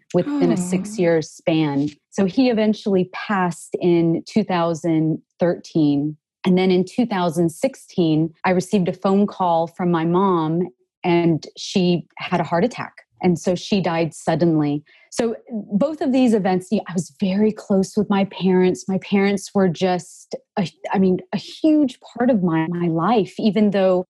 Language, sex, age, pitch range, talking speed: English, female, 30-49, 170-200 Hz, 150 wpm